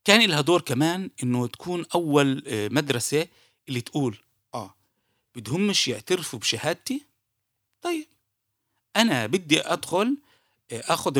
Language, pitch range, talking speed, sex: Arabic, 120-180 Hz, 100 wpm, male